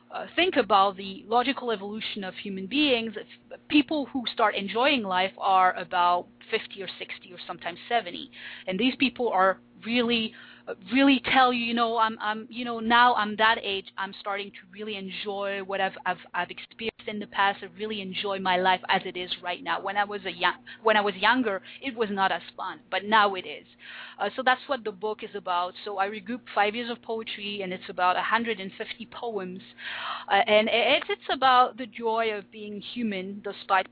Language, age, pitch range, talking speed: English, 30-49, 195-240 Hz, 200 wpm